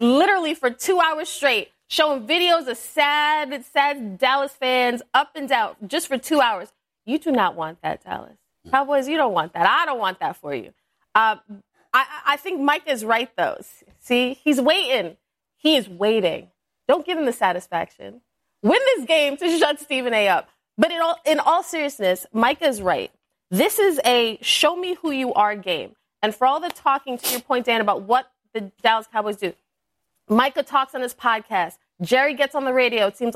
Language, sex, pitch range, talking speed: English, female, 215-290 Hz, 185 wpm